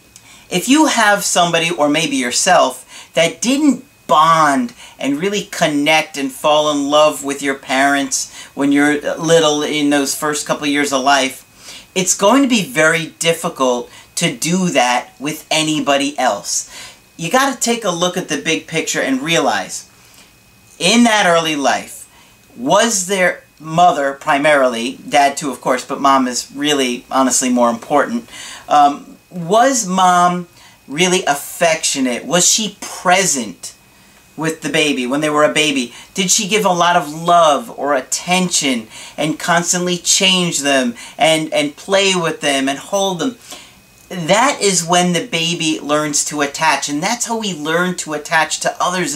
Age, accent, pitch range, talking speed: 40-59, American, 145-190 Hz, 155 wpm